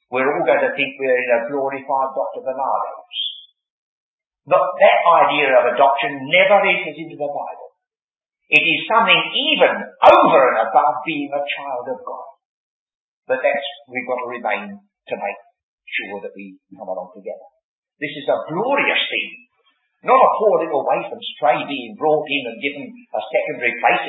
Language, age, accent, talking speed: English, 50-69, British, 165 wpm